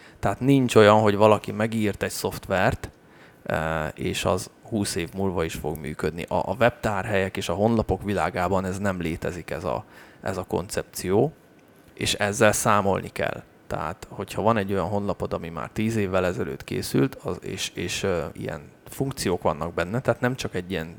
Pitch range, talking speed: 90-110 Hz, 170 wpm